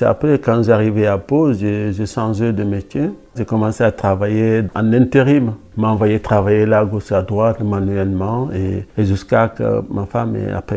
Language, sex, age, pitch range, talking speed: French, male, 50-69, 105-125 Hz, 175 wpm